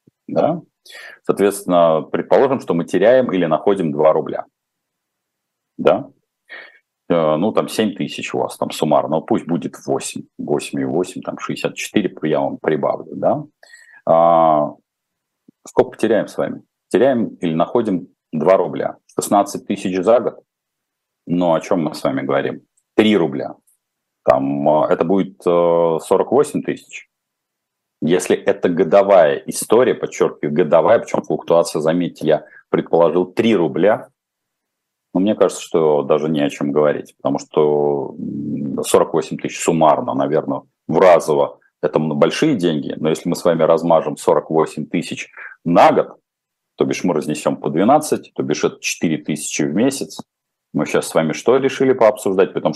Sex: male